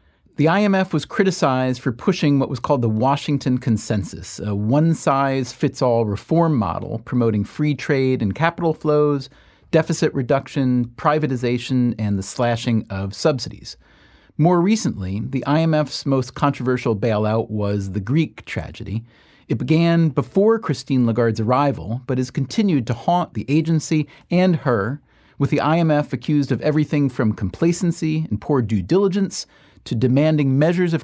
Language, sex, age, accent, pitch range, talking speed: English, male, 40-59, American, 115-155 Hz, 140 wpm